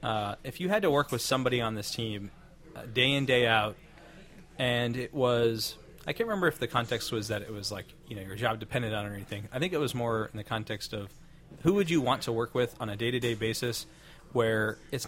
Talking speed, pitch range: 240 wpm, 110-135 Hz